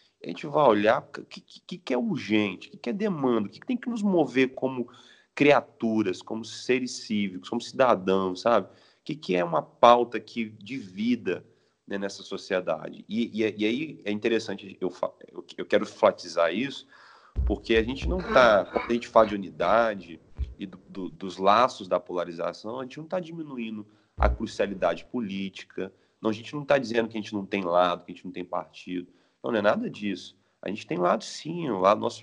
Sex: male